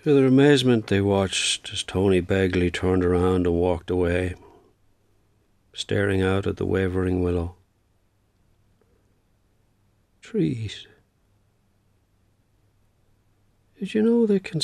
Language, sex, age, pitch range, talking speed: English, male, 50-69, 100-110 Hz, 105 wpm